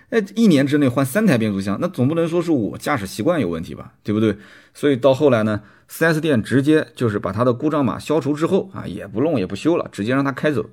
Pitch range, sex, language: 100-140 Hz, male, Chinese